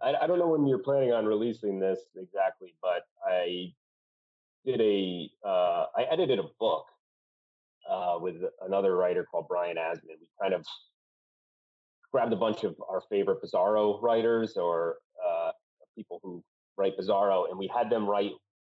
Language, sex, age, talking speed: English, male, 30-49, 155 wpm